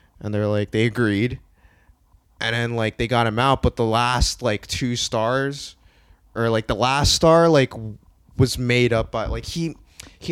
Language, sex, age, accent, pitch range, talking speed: English, male, 20-39, American, 105-140 Hz, 180 wpm